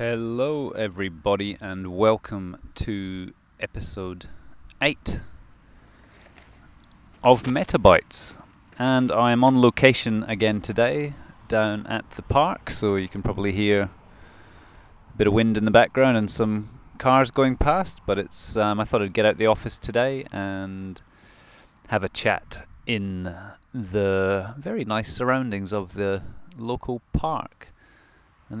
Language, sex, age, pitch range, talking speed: English, male, 30-49, 100-125 Hz, 130 wpm